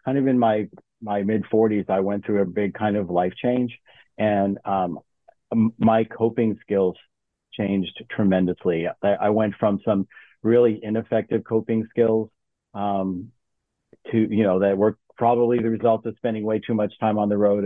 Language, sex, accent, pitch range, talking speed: English, male, American, 95-110 Hz, 165 wpm